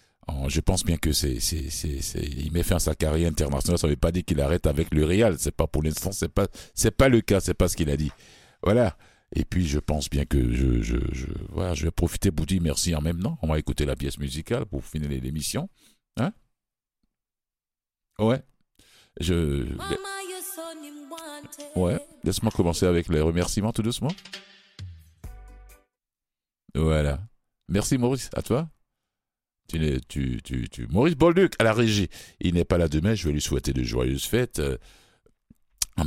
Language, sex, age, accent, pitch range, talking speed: French, male, 50-69, French, 70-95 Hz, 180 wpm